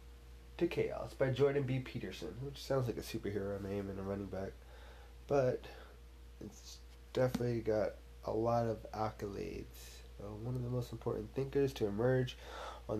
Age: 20-39